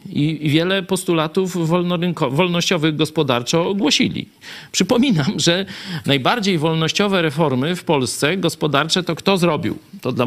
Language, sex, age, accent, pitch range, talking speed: Polish, male, 50-69, native, 125-185 Hz, 110 wpm